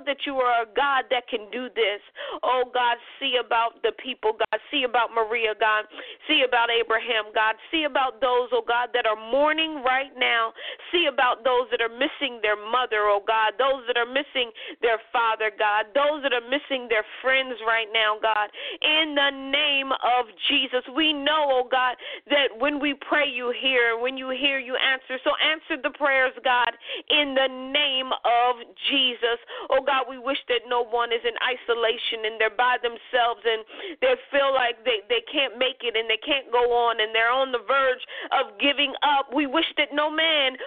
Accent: American